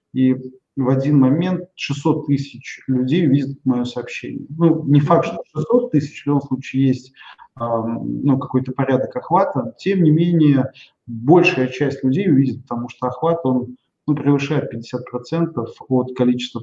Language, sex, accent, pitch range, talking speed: Russian, male, native, 125-150 Hz, 145 wpm